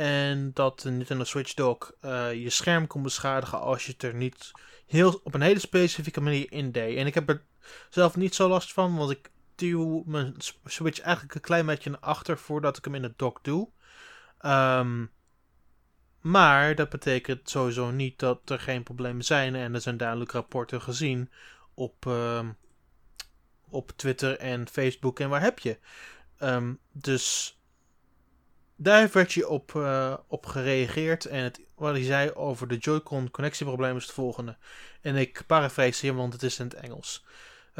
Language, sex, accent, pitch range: Dutch, male, Dutch, 130-160 Hz